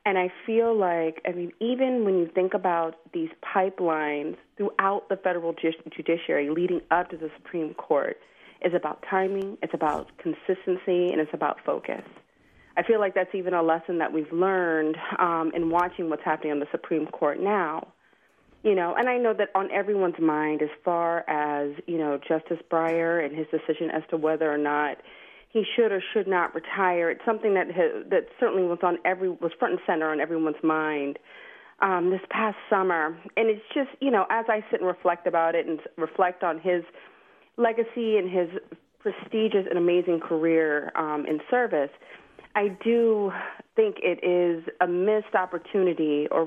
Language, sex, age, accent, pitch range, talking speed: English, female, 40-59, American, 160-200 Hz, 180 wpm